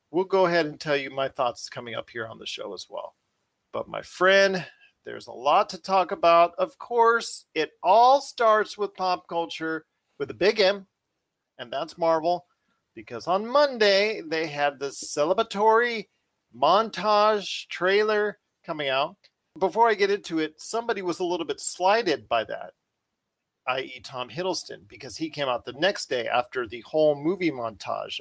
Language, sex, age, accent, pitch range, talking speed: English, male, 40-59, American, 140-200 Hz, 170 wpm